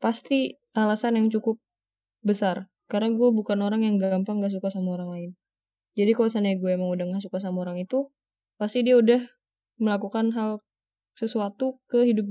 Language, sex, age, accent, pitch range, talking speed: Indonesian, female, 10-29, native, 185-230 Hz, 170 wpm